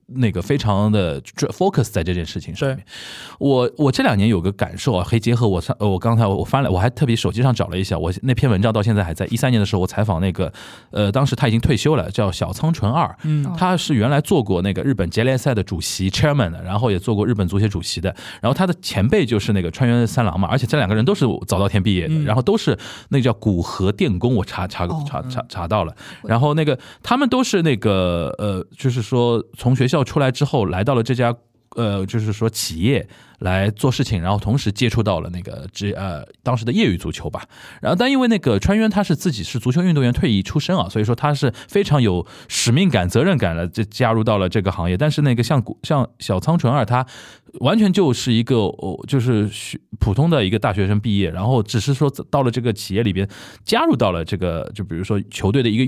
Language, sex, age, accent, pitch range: Chinese, male, 20-39, native, 100-130 Hz